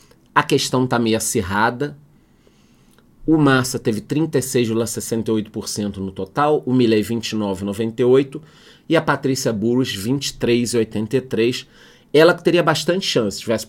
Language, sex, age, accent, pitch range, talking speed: Portuguese, male, 40-59, Brazilian, 115-155 Hz, 110 wpm